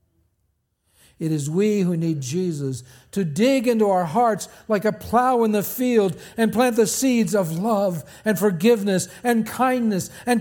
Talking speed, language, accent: 160 wpm, English, American